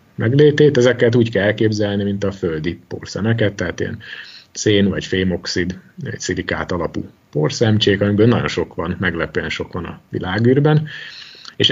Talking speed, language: 145 wpm, Hungarian